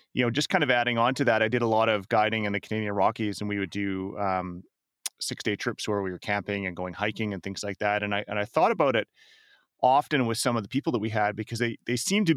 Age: 30-49